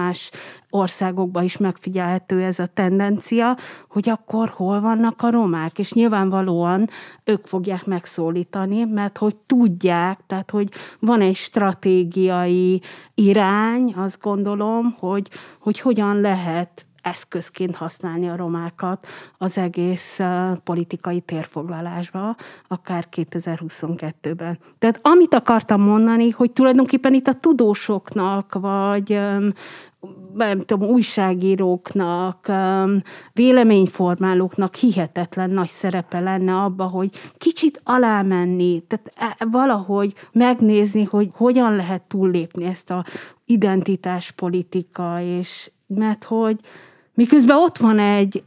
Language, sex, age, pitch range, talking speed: Hungarian, female, 30-49, 180-215 Hz, 105 wpm